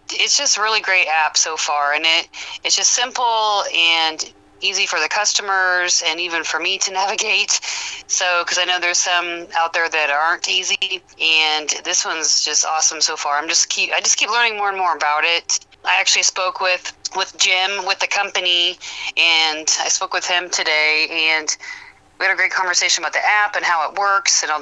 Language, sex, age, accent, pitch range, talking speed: English, female, 30-49, American, 150-190 Hz, 205 wpm